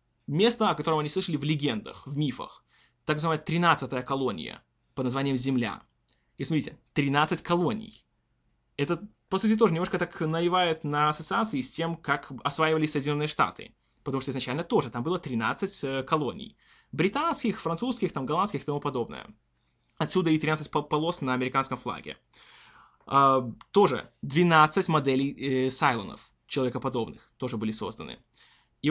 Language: Russian